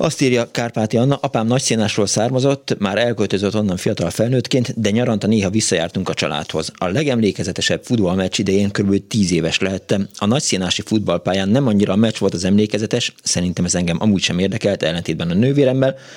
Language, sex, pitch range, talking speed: Hungarian, male, 95-120 Hz, 165 wpm